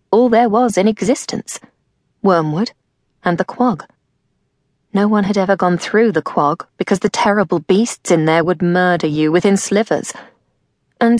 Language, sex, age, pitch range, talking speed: English, female, 20-39, 195-245 Hz, 155 wpm